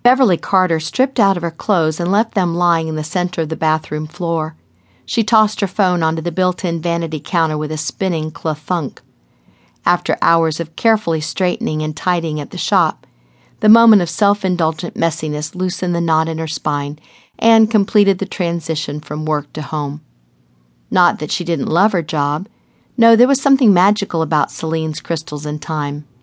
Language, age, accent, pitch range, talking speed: English, 50-69, American, 155-195 Hz, 175 wpm